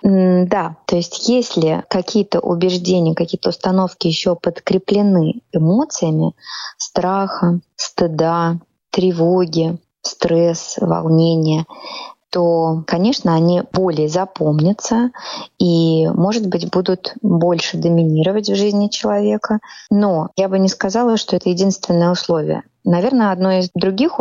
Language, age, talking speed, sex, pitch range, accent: Russian, 20-39, 105 wpm, female, 170-215 Hz, native